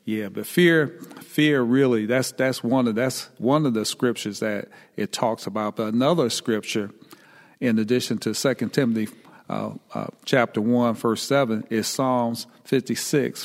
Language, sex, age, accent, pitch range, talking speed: English, male, 40-59, American, 115-140 Hz, 155 wpm